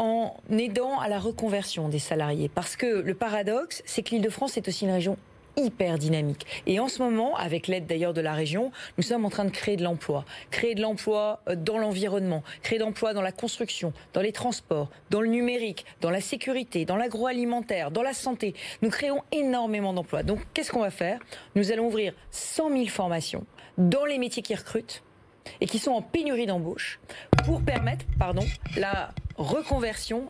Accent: French